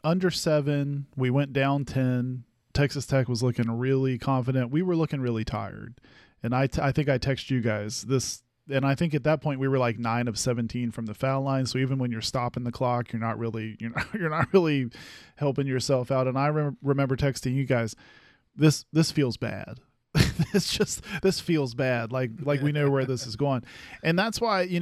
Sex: male